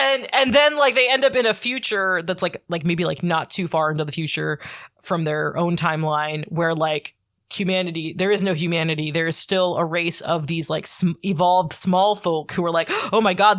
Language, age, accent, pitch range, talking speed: English, 20-39, American, 160-200 Hz, 220 wpm